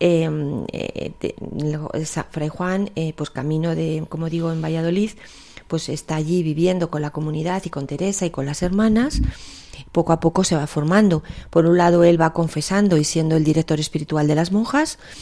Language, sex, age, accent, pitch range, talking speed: Spanish, female, 40-59, Spanish, 155-175 Hz, 180 wpm